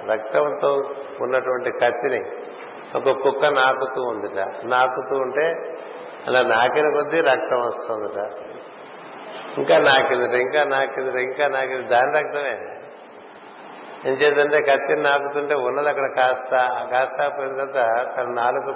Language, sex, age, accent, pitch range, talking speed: Telugu, male, 60-79, native, 125-150 Hz, 100 wpm